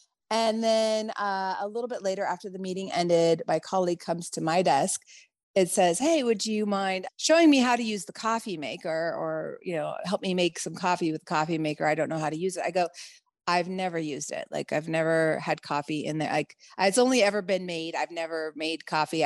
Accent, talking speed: American, 225 wpm